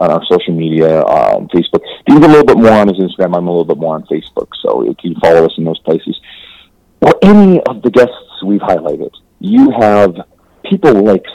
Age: 40-59